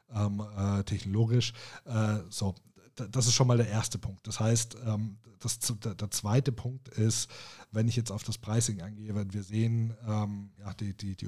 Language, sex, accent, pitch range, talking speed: German, male, German, 105-115 Hz, 140 wpm